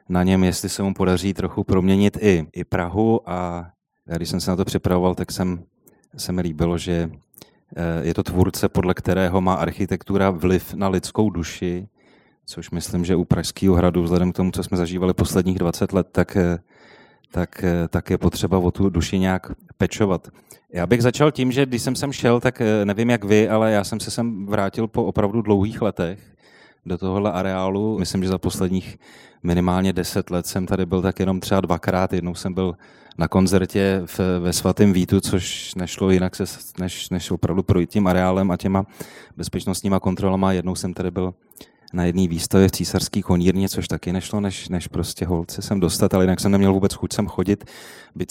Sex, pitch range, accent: male, 90-100 Hz, native